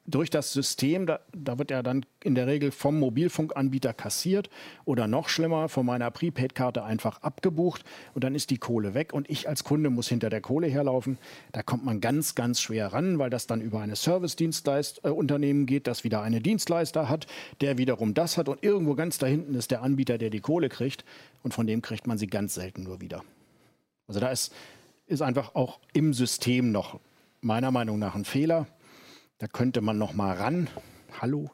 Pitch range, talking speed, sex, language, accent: 115-145 Hz, 200 wpm, male, German, German